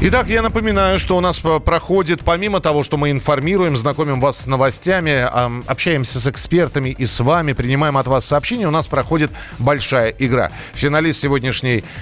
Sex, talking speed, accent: male, 165 wpm, native